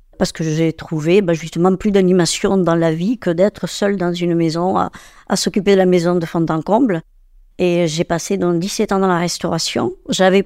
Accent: French